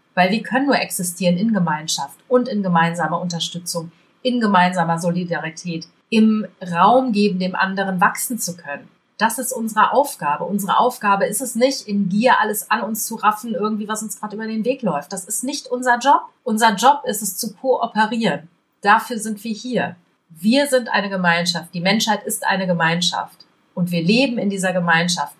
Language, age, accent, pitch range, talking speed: German, 30-49, German, 175-225 Hz, 180 wpm